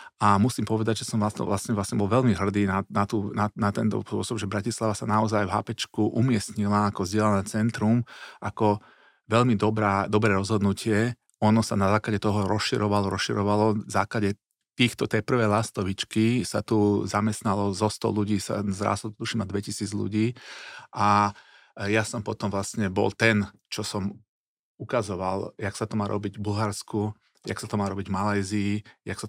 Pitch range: 100-110 Hz